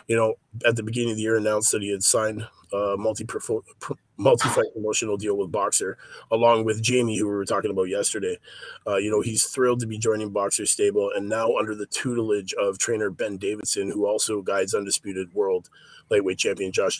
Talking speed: 195 wpm